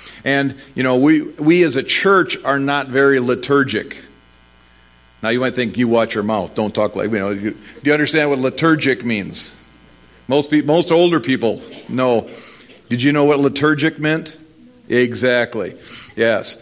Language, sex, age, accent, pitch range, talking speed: English, male, 50-69, American, 130-170 Hz, 165 wpm